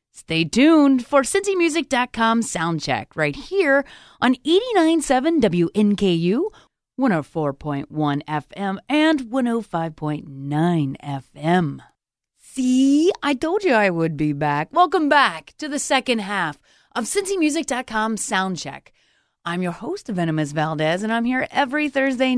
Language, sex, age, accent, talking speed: English, female, 30-49, American, 115 wpm